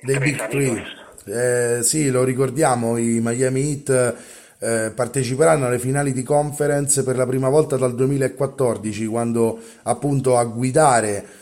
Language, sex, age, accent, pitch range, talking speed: Italian, male, 30-49, native, 110-135 Hz, 125 wpm